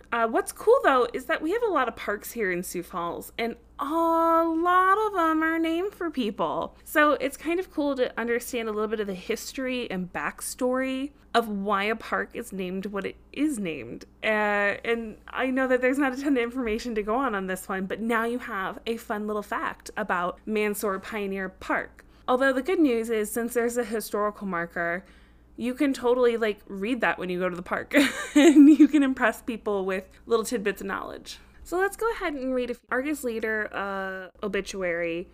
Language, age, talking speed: English, 20-39, 205 wpm